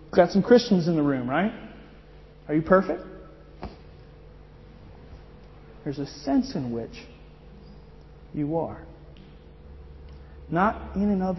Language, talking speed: English, 110 wpm